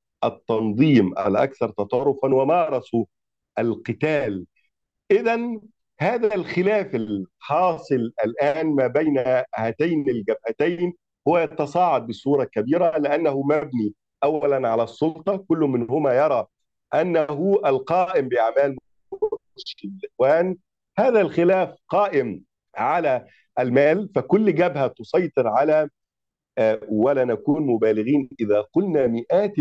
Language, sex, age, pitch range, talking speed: Arabic, male, 50-69, 120-180 Hz, 90 wpm